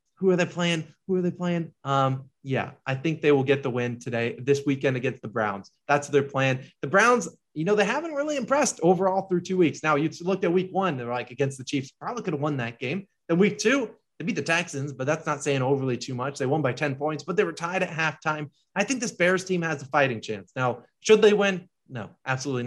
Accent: American